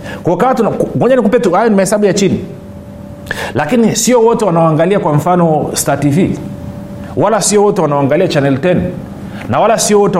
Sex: male